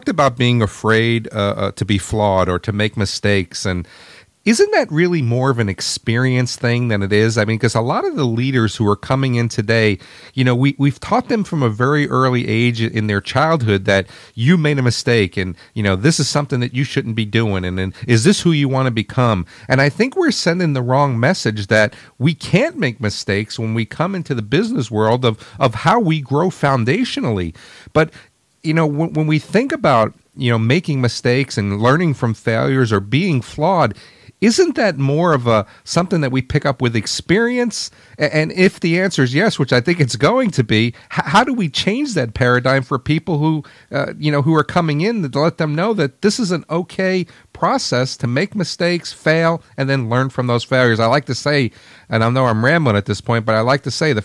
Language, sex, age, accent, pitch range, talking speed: English, male, 40-59, American, 115-160 Hz, 220 wpm